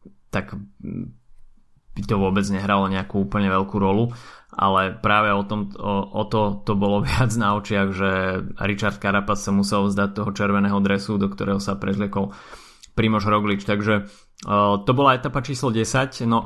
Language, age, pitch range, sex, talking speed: Slovak, 20-39, 105-115 Hz, male, 160 wpm